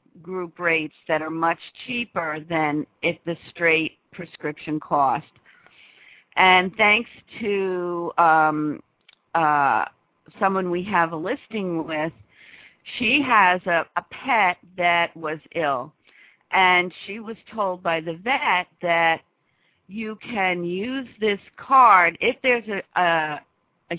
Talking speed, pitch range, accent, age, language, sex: 125 wpm, 160-195 Hz, American, 50-69, English, female